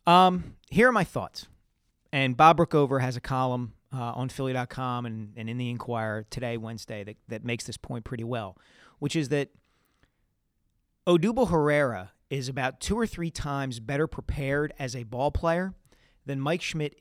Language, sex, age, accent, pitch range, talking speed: English, male, 40-59, American, 125-165 Hz, 170 wpm